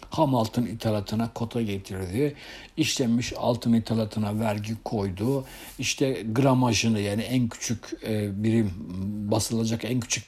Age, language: 60-79, Turkish